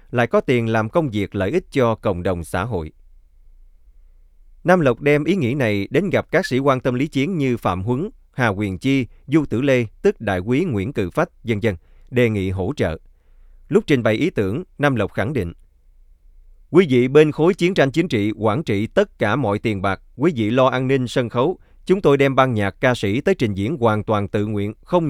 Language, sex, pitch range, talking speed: Vietnamese, male, 95-135 Hz, 225 wpm